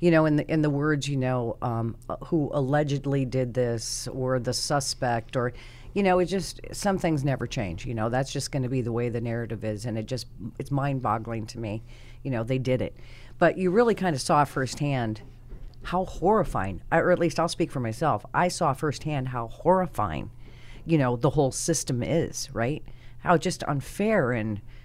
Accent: American